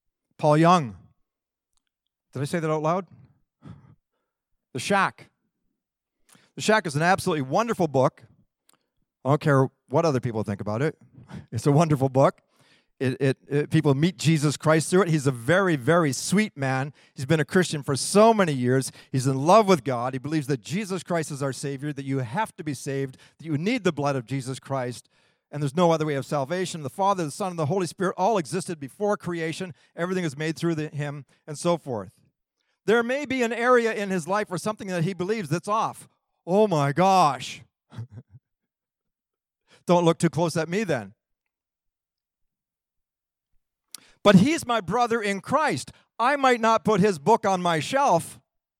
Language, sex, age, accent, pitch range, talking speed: English, male, 50-69, American, 140-195 Hz, 180 wpm